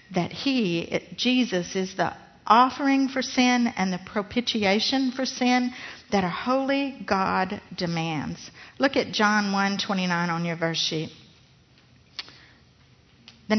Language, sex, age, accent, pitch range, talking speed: English, female, 50-69, American, 180-230 Hz, 125 wpm